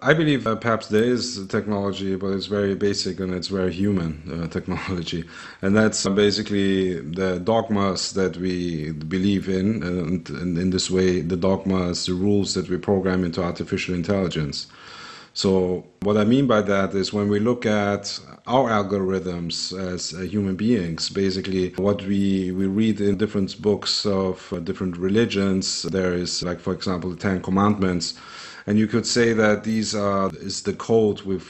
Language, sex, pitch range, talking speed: English, male, 90-105 Hz, 165 wpm